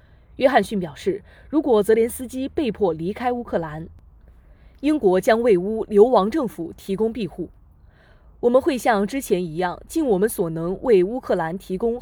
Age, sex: 20-39, female